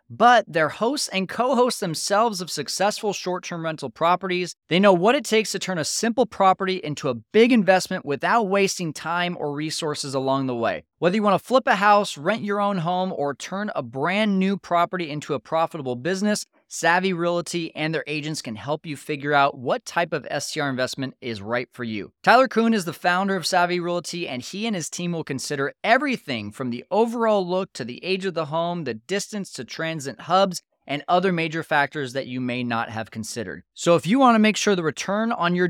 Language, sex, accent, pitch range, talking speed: English, male, American, 145-195 Hz, 210 wpm